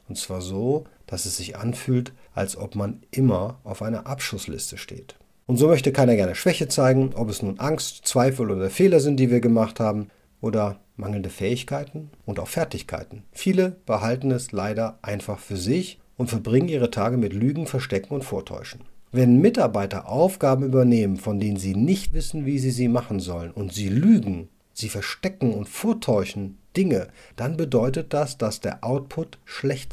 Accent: German